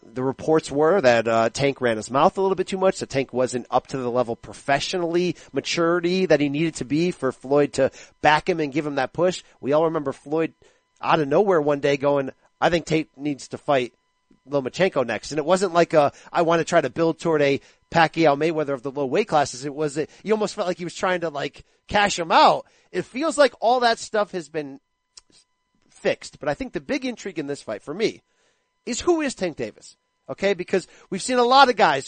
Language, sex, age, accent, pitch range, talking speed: English, male, 40-59, American, 140-185 Hz, 235 wpm